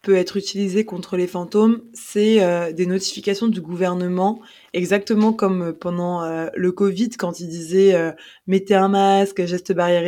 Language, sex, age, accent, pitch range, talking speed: French, female, 20-39, French, 170-205 Hz, 165 wpm